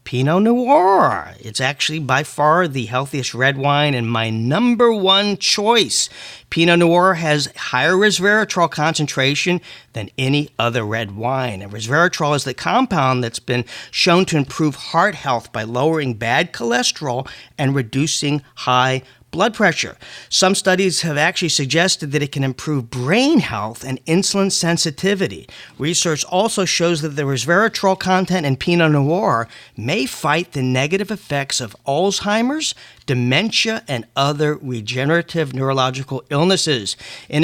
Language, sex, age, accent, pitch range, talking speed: English, male, 40-59, American, 130-185 Hz, 135 wpm